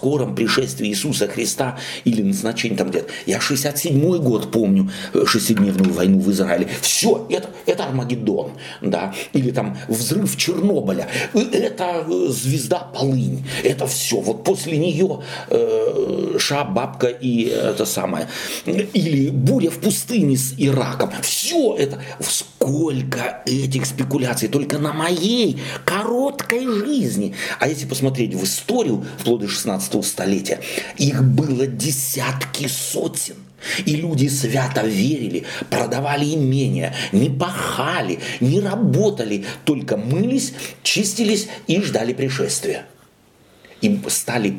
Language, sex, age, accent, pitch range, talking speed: Russian, male, 50-69, native, 120-150 Hz, 115 wpm